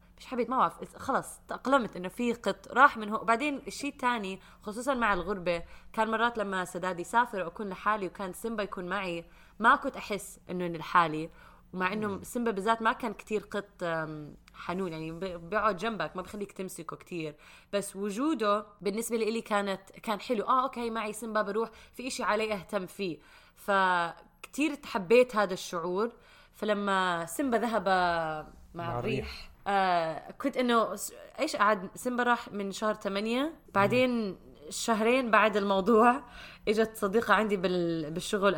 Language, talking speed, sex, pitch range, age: Arabic, 150 wpm, female, 190-240 Hz, 20-39